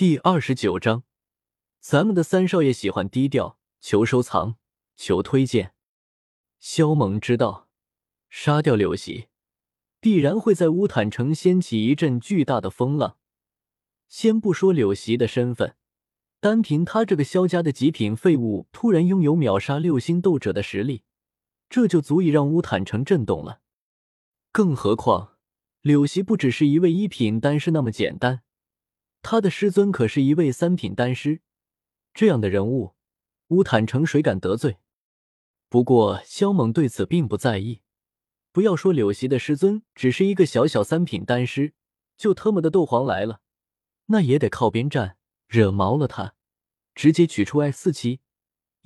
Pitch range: 115-170 Hz